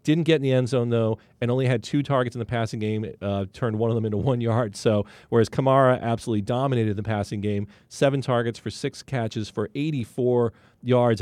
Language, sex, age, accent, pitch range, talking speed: English, male, 40-59, American, 110-130 Hz, 215 wpm